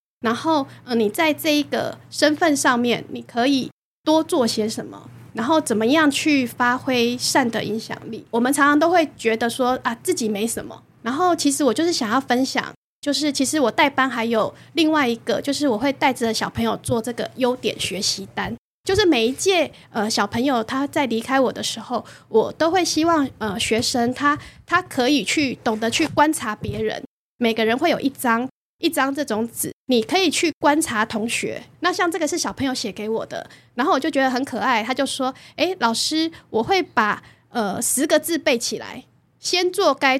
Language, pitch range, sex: Chinese, 230-310 Hz, female